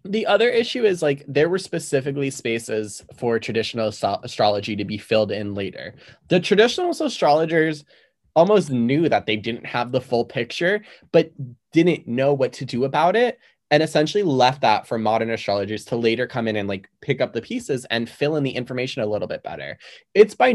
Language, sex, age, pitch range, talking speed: English, male, 20-39, 115-165 Hz, 190 wpm